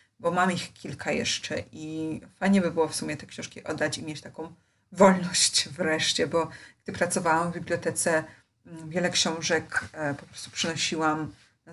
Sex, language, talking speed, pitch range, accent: female, Polish, 155 wpm, 155-180 Hz, native